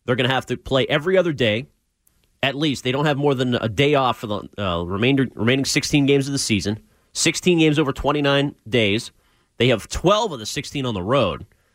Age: 30-49